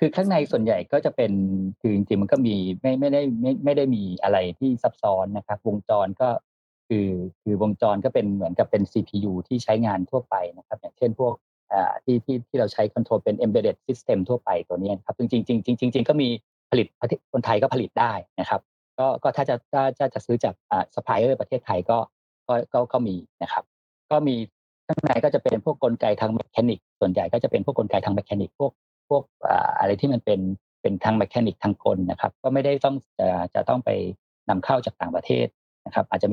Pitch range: 100-140 Hz